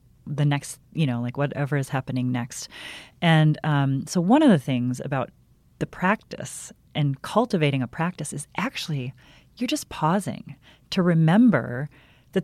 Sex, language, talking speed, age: female, English, 150 wpm, 30-49